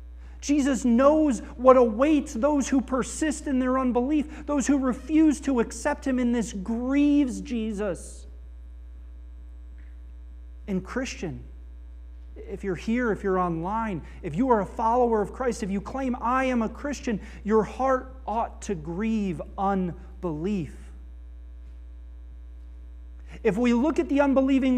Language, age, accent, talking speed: English, 40-59, American, 130 wpm